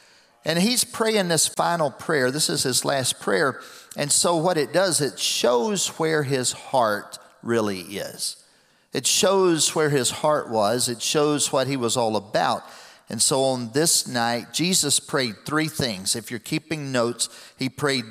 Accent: American